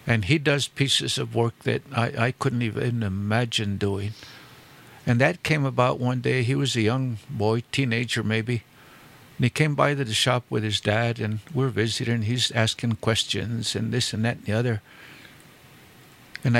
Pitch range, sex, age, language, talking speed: 115-135 Hz, male, 60-79, English, 180 wpm